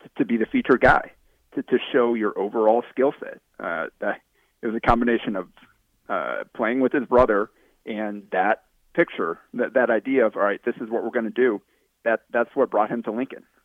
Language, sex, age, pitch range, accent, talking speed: English, male, 30-49, 115-130 Hz, American, 200 wpm